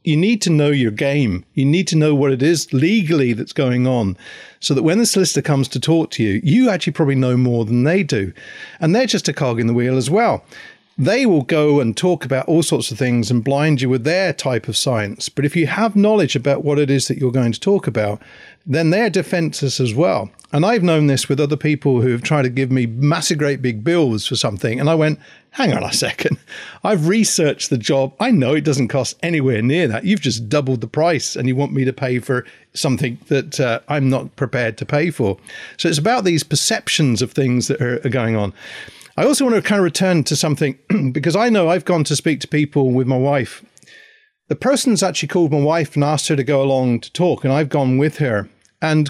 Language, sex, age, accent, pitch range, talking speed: English, male, 50-69, British, 130-165 Hz, 240 wpm